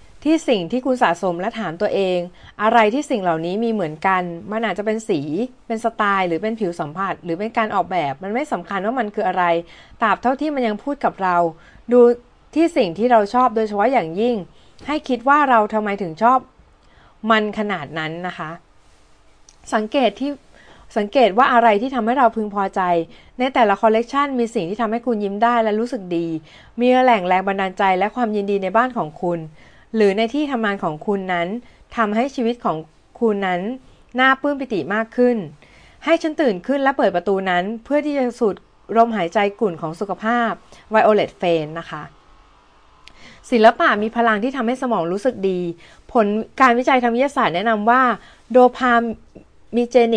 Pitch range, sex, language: 185-245 Hz, female, Thai